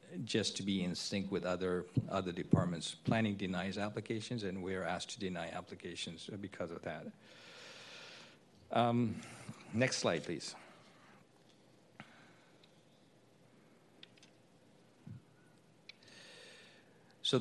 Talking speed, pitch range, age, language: 90 wpm, 90-105 Hz, 50-69, English